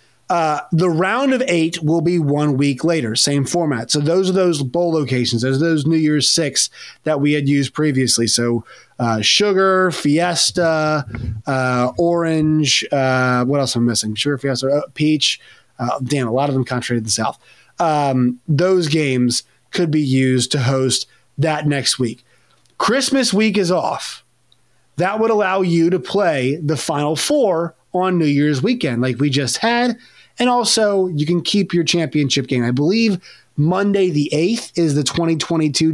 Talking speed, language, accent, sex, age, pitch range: 170 wpm, English, American, male, 30-49, 130-175 Hz